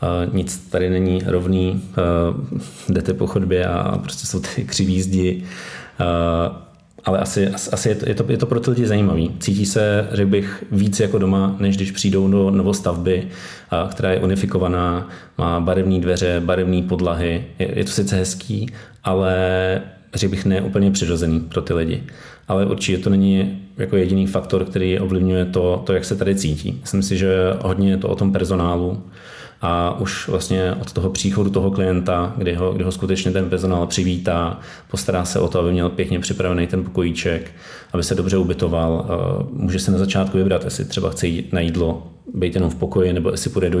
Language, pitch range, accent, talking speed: Czech, 90-95 Hz, native, 180 wpm